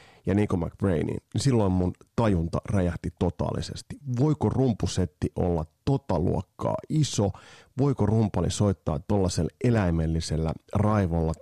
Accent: native